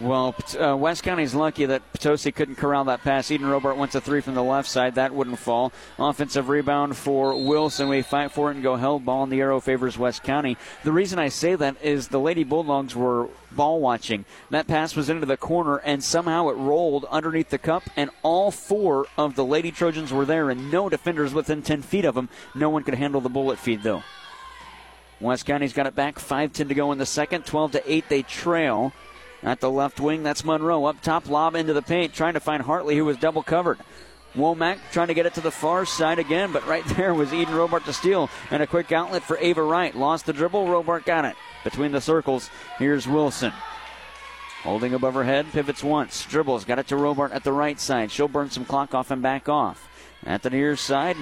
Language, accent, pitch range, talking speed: English, American, 135-160 Hz, 220 wpm